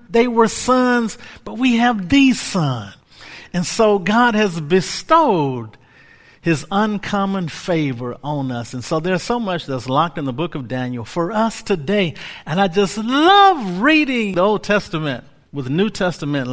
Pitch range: 140-215 Hz